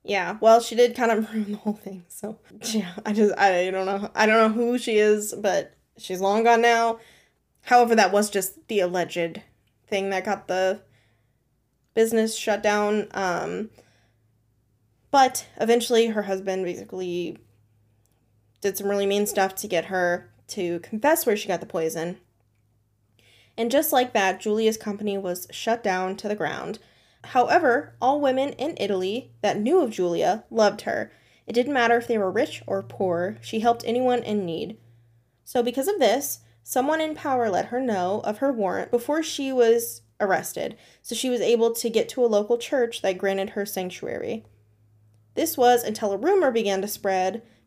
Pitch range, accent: 180-230 Hz, American